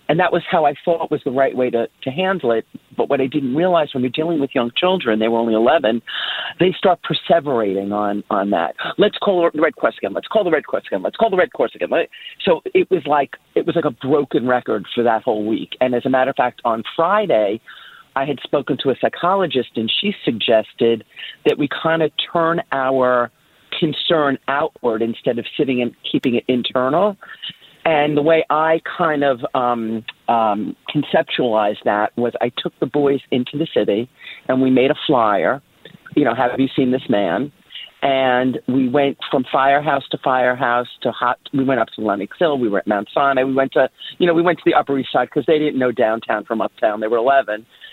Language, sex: English, male